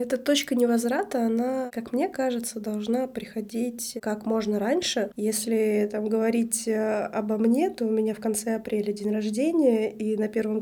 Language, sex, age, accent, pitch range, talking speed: Russian, female, 20-39, native, 210-245 Hz, 160 wpm